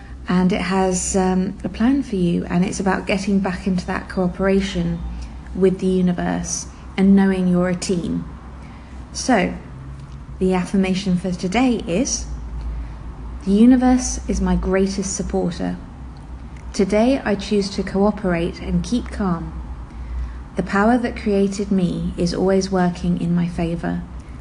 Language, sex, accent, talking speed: English, female, British, 135 wpm